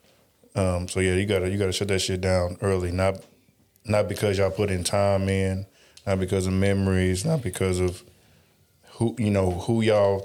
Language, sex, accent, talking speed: English, male, American, 185 wpm